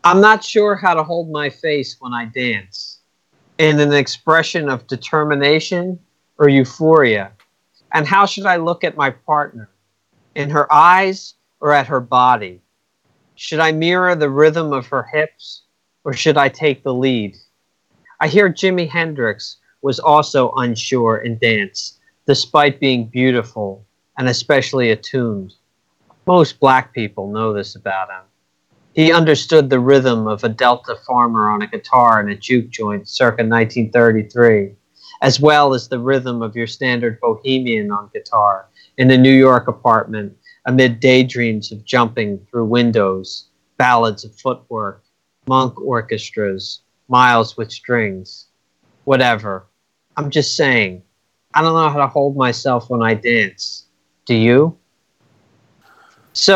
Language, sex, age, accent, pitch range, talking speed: English, male, 40-59, American, 110-150 Hz, 140 wpm